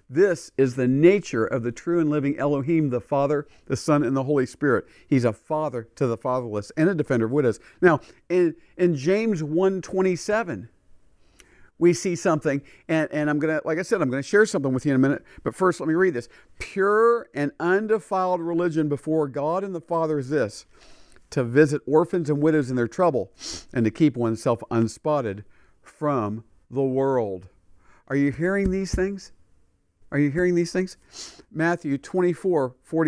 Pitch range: 120-170 Hz